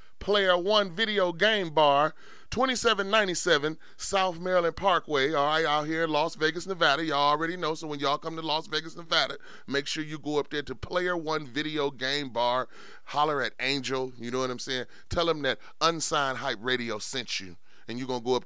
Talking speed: 200 wpm